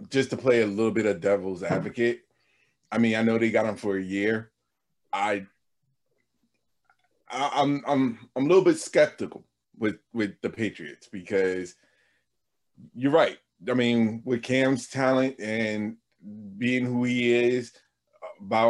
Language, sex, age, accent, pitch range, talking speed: English, male, 30-49, American, 105-130 Hz, 150 wpm